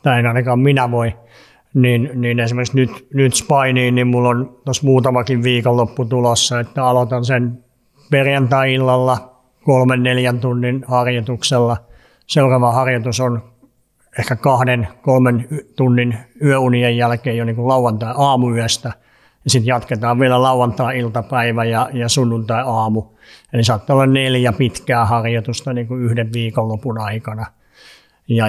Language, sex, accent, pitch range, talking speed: Finnish, male, native, 115-130 Hz, 120 wpm